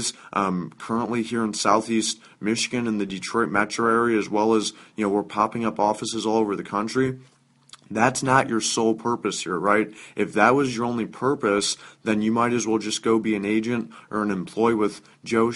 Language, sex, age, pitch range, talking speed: English, male, 20-39, 105-120 Hz, 200 wpm